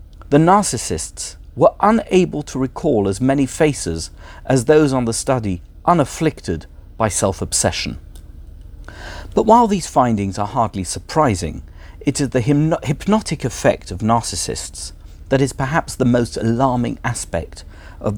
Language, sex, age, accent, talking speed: English, male, 50-69, British, 130 wpm